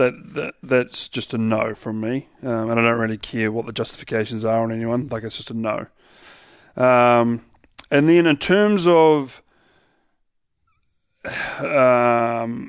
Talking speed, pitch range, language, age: 150 wpm, 120-135 Hz, English, 30-49